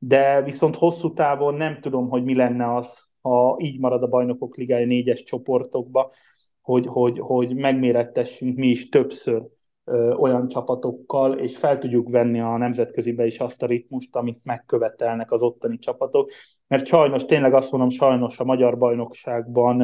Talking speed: 160 wpm